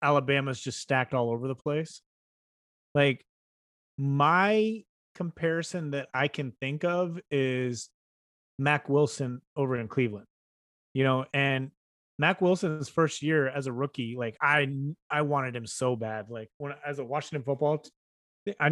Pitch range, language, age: 125-150 Hz, English, 30-49